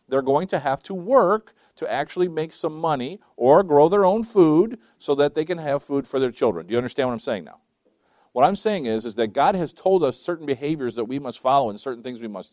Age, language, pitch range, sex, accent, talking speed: 50-69, English, 135-190 Hz, male, American, 255 wpm